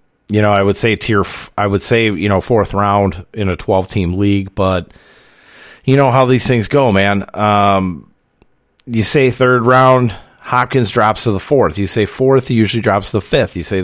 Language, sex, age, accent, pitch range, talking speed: English, male, 40-59, American, 90-115 Hz, 210 wpm